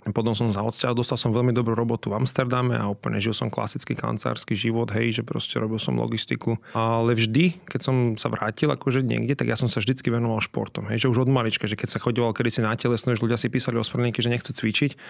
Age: 30-49